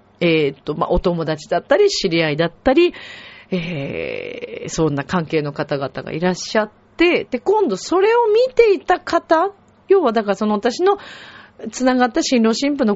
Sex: female